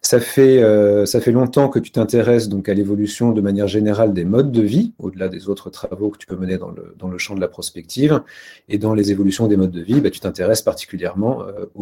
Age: 40-59